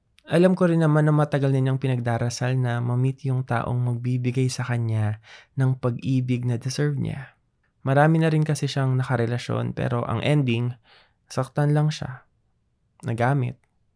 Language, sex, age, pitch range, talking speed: Filipino, male, 20-39, 120-145 Hz, 145 wpm